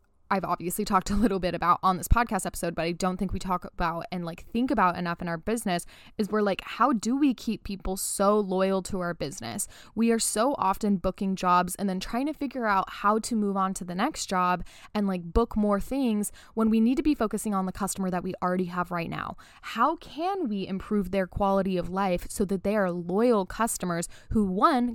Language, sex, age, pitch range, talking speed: English, female, 20-39, 180-225 Hz, 230 wpm